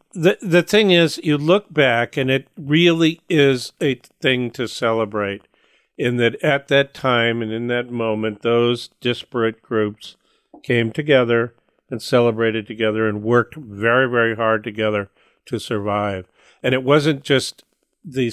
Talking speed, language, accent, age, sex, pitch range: 145 wpm, English, American, 50-69, male, 110-130 Hz